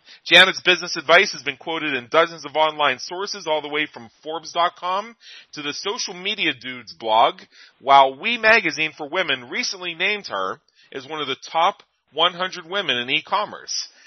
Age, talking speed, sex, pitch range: 40-59, 165 wpm, male, 135-180 Hz